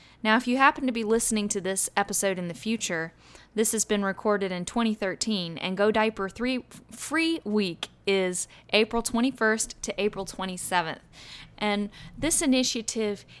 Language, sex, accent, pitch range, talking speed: English, female, American, 185-220 Hz, 150 wpm